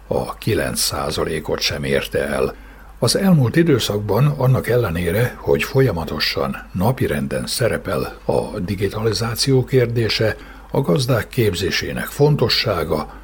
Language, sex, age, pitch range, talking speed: Hungarian, male, 60-79, 95-125 Hz, 95 wpm